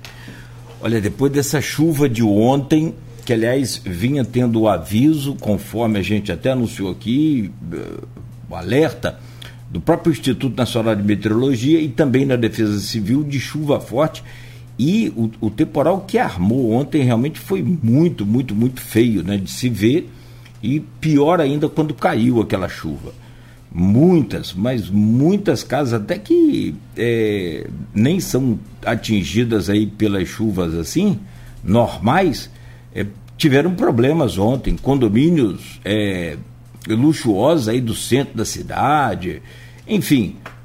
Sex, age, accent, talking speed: male, 60-79, Brazilian, 120 wpm